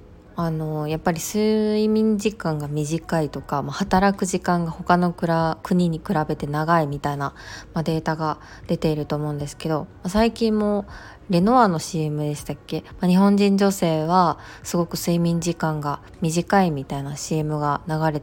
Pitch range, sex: 150-190 Hz, female